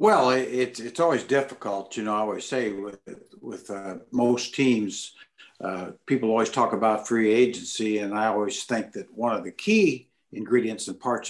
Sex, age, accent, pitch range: male, 60-79, American, 100-120 Hz